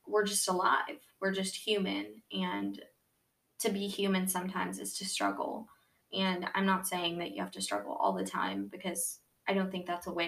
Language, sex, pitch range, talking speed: English, female, 175-205 Hz, 195 wpm